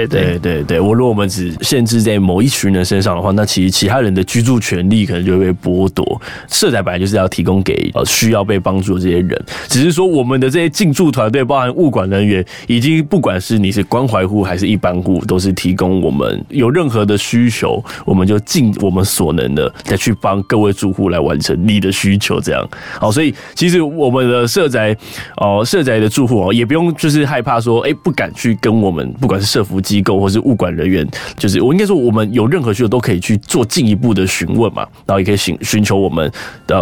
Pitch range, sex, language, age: 95-125 Hz, male, Chinese, 20-39